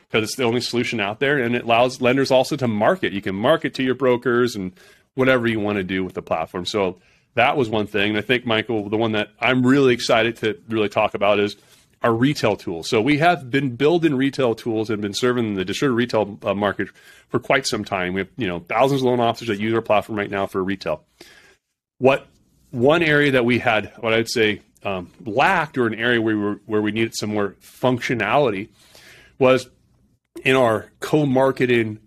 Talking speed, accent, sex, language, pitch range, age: 215 wpm, American, male, English, 110-135 Hz, 30-49